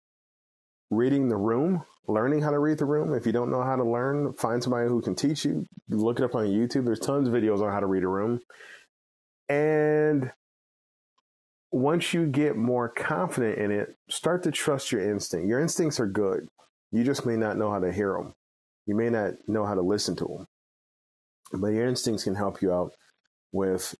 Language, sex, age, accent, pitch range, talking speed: English, male, 30-49, American, 95-135 Hz, 200 wpm